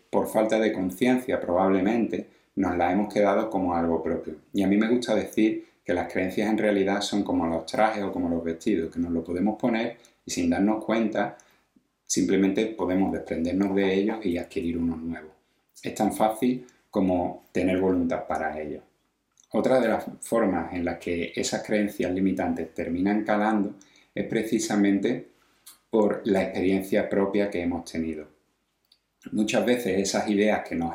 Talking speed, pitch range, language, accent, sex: 165 wpm, 90-110 Hz, Spanish, Spanish, male